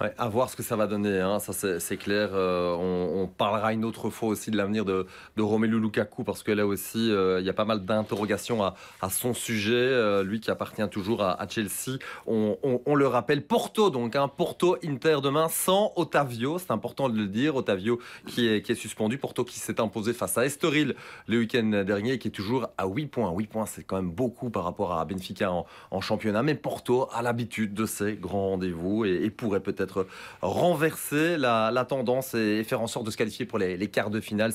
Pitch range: 100-125 Hz